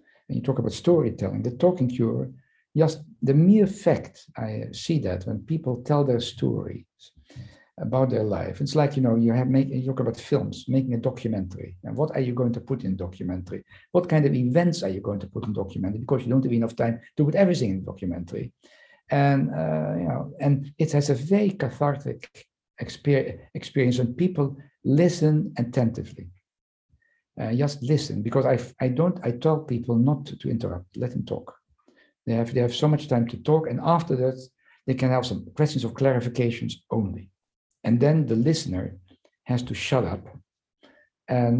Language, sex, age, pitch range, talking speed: English, male, 60-79, 110-140 Hz, 190 wpm